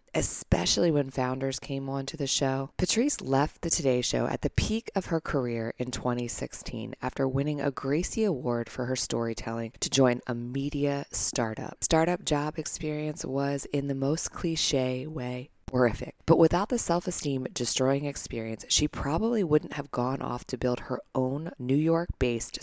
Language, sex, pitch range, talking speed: English, female, 125-165 Hz, 160 wpm